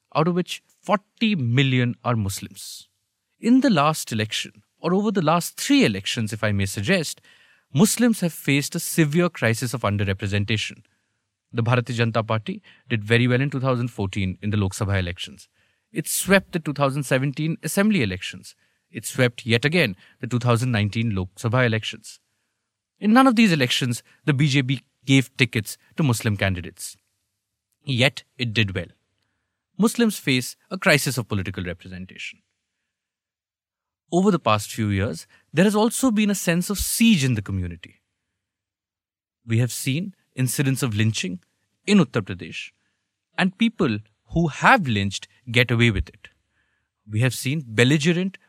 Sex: male